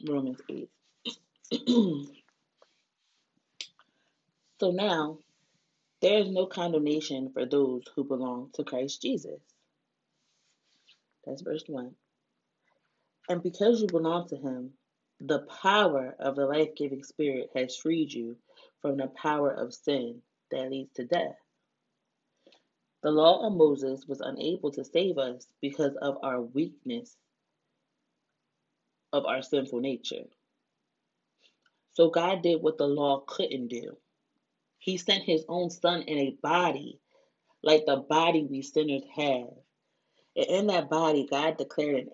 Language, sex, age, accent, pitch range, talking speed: English, female, 30-49, American, 140-180 Hz, 125 wpm